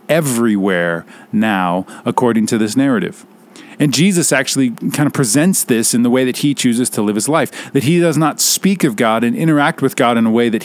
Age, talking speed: 40-59, 215 wpm